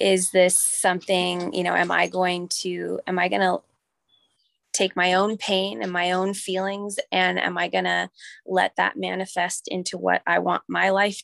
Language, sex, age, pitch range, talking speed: English, female, 20-39, 170-190 Hz, 185 wpm